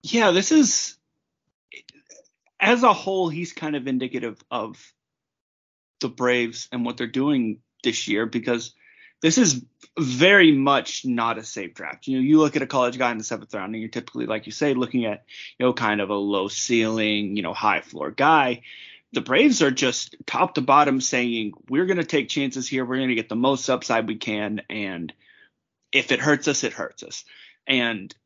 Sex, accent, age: male, American, 30-49